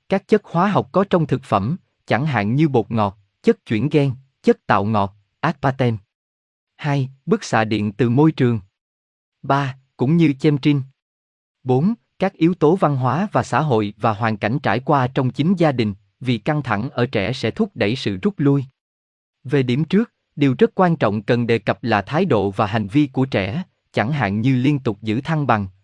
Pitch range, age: 110-160 Hz, 20-39